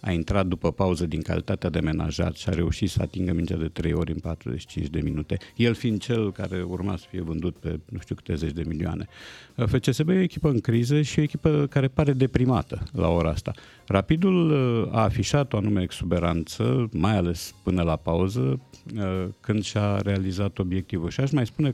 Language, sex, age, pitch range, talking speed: Romanian, male, 50-69, 90-125 Hz, 195 wpm